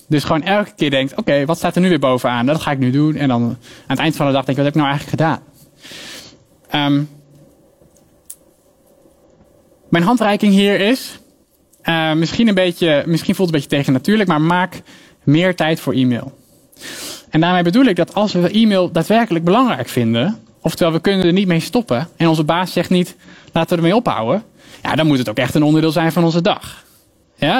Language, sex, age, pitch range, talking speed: Dutch, male, 20-39, 145-190 Hz, 205 wpm